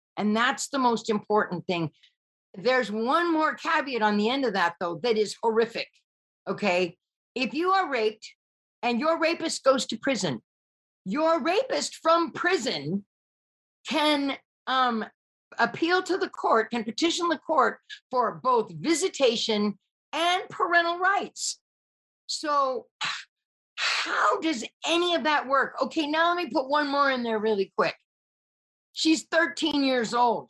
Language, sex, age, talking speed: English, female, 50-69, 140 wpm